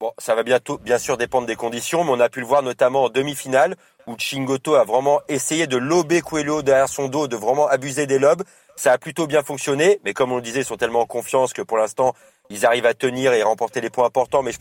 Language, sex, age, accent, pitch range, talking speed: French, male, 30-49, French, 135-165 Hz, 265 wpm